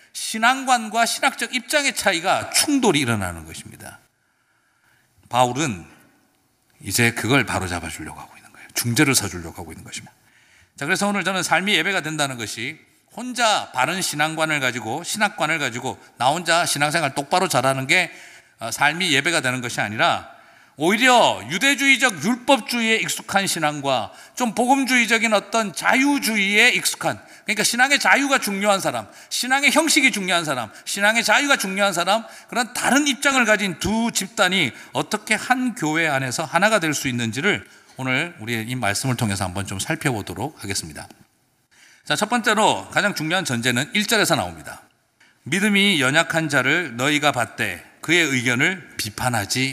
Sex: male